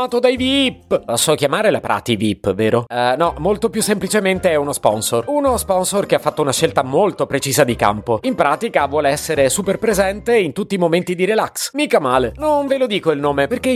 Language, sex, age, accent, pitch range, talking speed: Italian, male, 30-49, native, 130-190 Hz, 215 wpm